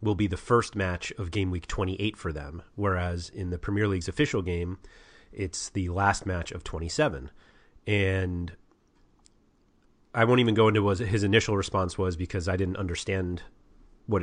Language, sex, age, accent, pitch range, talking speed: English, male, 30-49, American, 90-105 Hz, 170 wpm